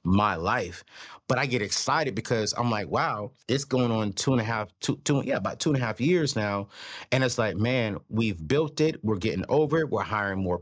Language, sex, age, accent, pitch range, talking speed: English, male, 30-49, American, 95-125 Hz, 230 wpm